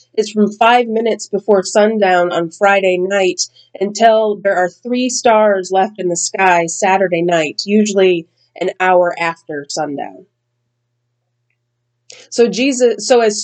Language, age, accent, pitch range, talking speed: English, 30-49, American, 145-215 Hz, 130 wpm